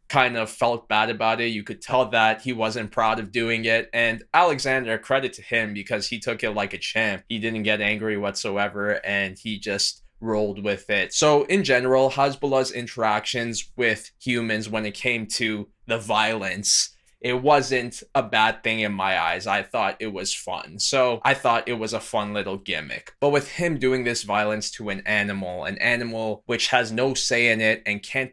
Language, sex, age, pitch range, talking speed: English, male, 20-39, 105-125 Hz, 195 wpm